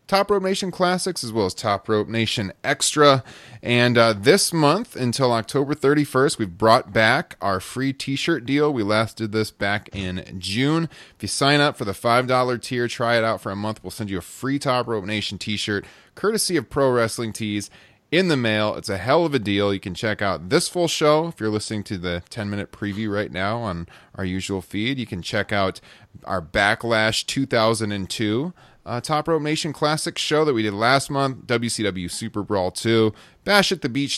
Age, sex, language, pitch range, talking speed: 30-49, male, English, 100-135 Hz, 200 wpm